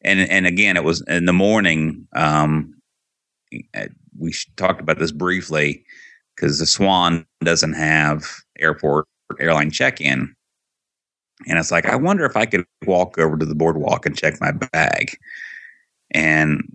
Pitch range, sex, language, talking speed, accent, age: 80-90 Hz, male, English, 145 wpm, American, 30-49